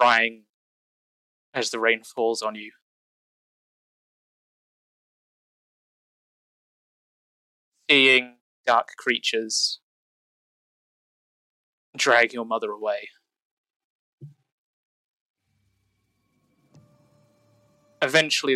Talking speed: 50 wpm